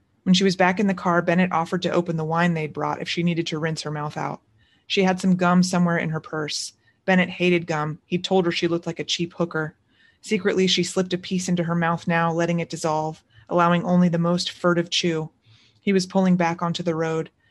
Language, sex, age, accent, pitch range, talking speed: English, female, 30-49, American, 155-180 Hz, 235 wpm